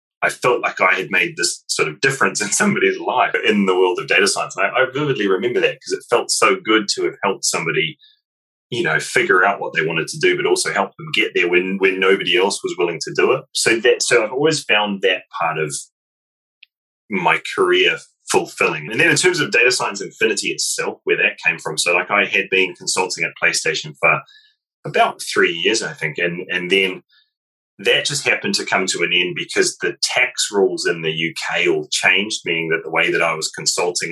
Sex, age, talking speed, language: male, 20-39, 220 wpm, English